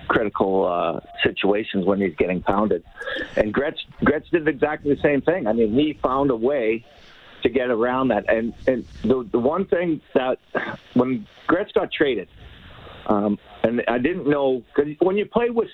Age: 50-69